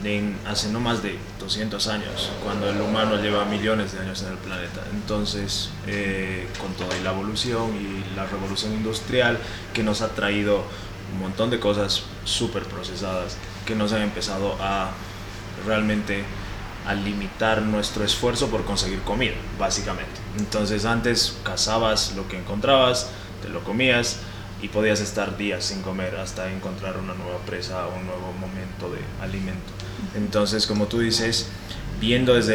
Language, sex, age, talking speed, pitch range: English, male, 20-39, 155 wpm, 100-110 Hz